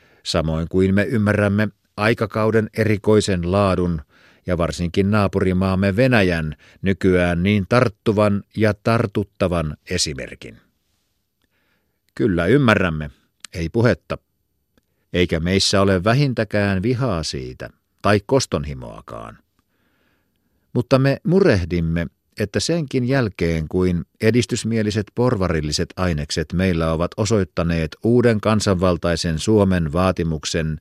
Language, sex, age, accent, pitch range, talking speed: Finnish, male, 50-69, native, 85-110 Hz, 90 wpm